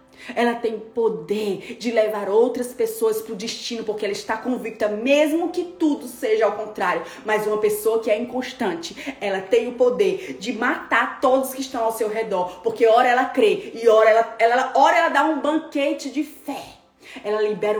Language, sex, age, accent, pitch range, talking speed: Portuguese, female, 20-39, Brazilian, 215-300 Hz, 185 wpm